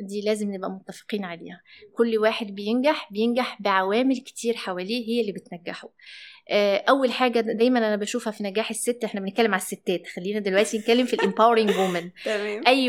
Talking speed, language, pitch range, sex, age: 160 wpm, Arabic, 205-245 Hz, female, 20-39